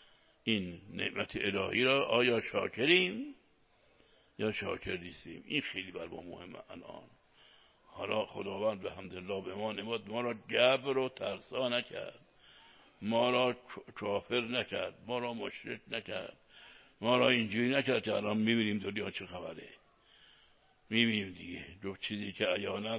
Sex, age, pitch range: male, 60-79, 110-135 Hz